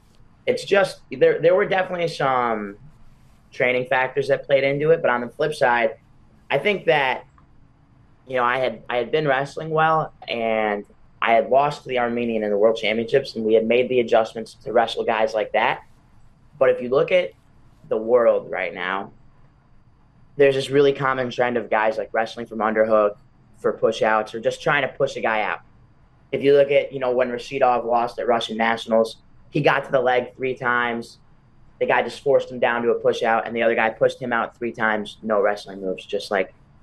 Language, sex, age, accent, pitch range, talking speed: English, male, 30-49, American, 115-150 Hz, 205 wpm